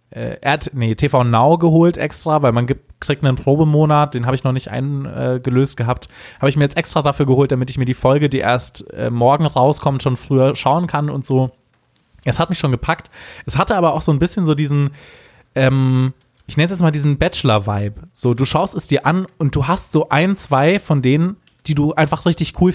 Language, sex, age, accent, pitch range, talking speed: German, male, 20-39, German, 120-145 Hz, 220 wpm